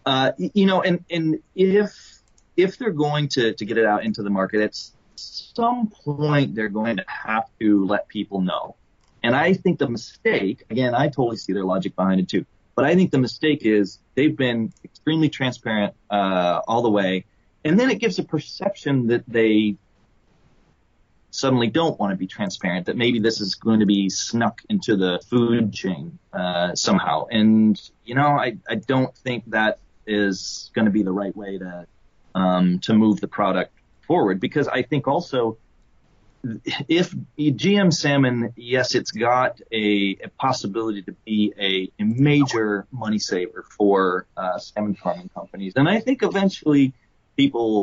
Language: English